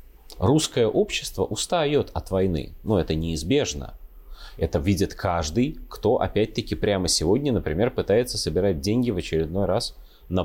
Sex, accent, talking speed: male, native, 130 wpm